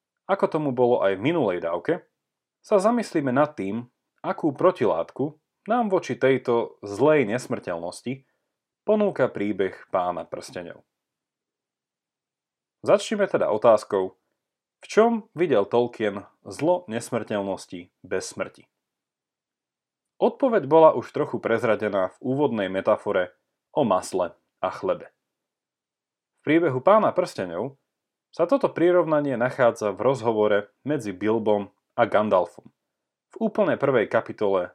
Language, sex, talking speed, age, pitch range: Slovak, male, 110 wpm, 30-49, 110-170 Hz